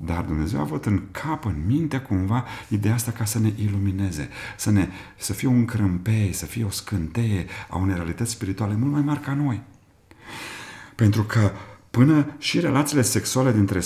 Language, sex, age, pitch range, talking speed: Romanian, male, 40-59, 90-115 Hz, 180 wpm